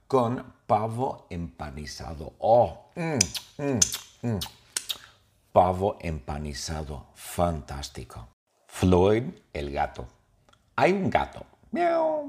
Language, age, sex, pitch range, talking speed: English, 50-69, male, 85-135 Hz, 80 wpm